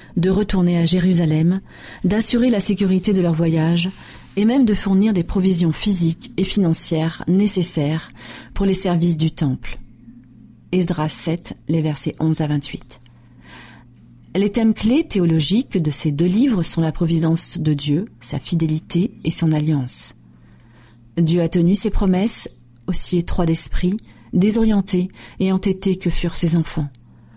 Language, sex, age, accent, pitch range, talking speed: French, female, 40-59, French, 155-190 Hz, 140 wpm